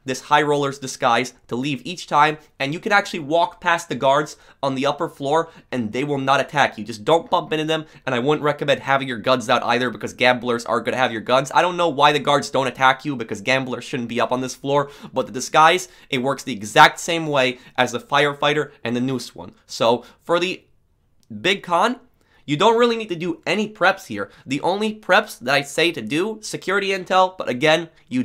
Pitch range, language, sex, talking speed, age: 125-165 Hz, English, male, 230 wpm, 20-39